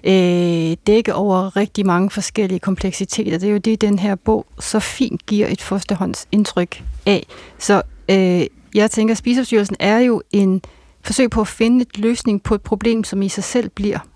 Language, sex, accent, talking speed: Danish, female, native, 175 wpm